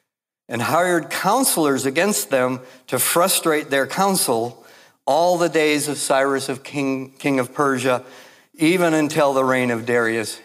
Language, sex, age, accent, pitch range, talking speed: English, male, 60-79, American, 120-160 Hz, 145 wpm